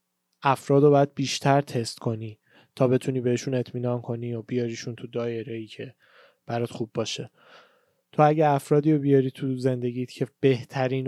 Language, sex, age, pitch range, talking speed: Persian, male, 20-39, 125-145 Hz, 150 wpm